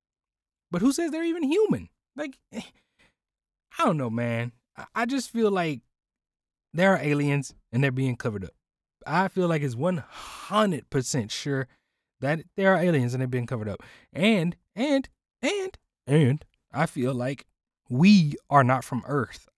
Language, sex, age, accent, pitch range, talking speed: English, male, 20-39, American, 120-155 Hz, 155 wpm